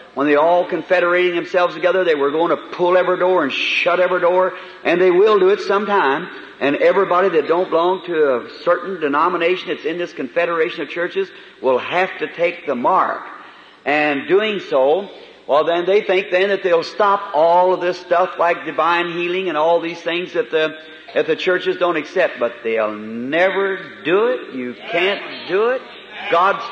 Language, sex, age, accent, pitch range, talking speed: English, male, 50-69, American, 165-195 Hz, 185 wpm